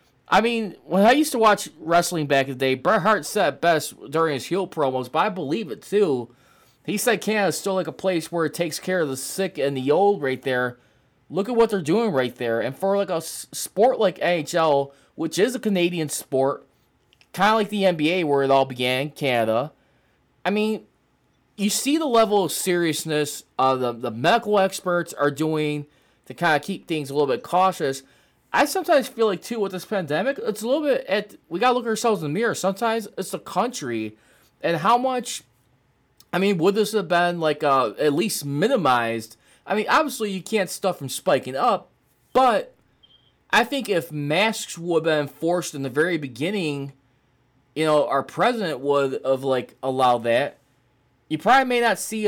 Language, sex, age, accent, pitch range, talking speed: English, male, 20-39, American, 140-205 Hz, 200 wpm